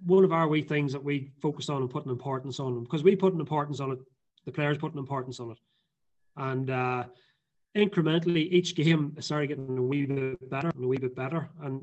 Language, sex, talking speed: English, male, 235 wpm